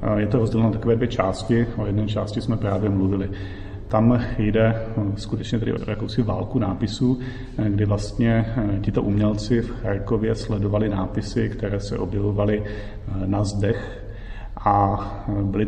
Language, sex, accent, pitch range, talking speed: Czech, male, native, 100-110 Hz, 135 wpm